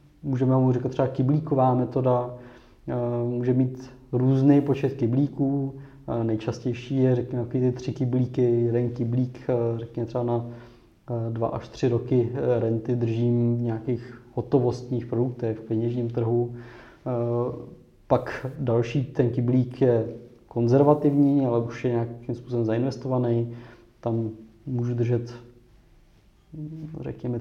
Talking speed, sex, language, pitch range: 110 wpm, male, Czech, 115-125 Hz